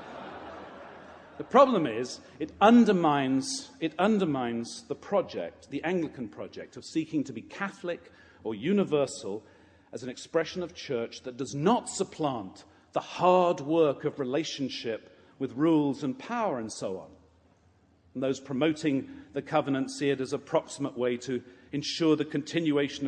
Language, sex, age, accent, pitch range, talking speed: English, male, 50-69, British, 125-160 Hz, 145 wpm